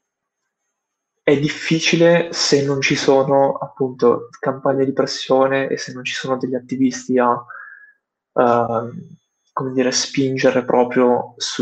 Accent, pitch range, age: native, 125-140 Hz, 20-39